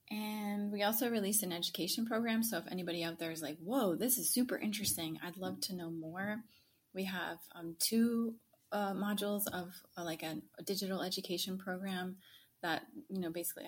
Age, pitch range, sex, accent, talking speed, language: 30-49, 170-210 Hz, female, American, 180 wpm, English